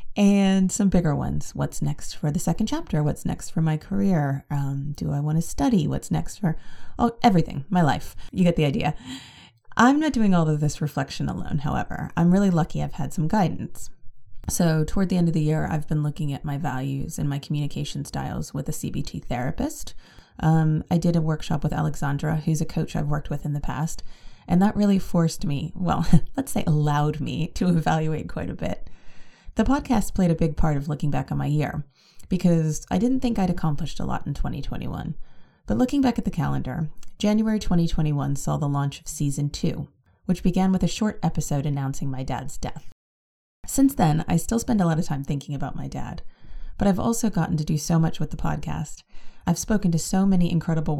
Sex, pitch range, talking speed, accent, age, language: female, 145-185 Hz, 205 wpm, American, 30-49, English